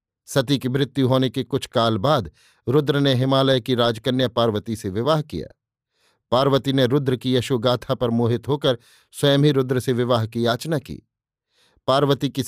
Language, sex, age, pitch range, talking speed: Hindi, male, 50-69, 120-140 Hz, 170 wpm